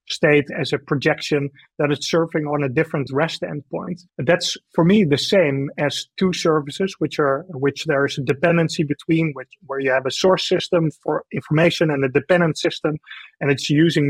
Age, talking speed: 30-49, 185 wpm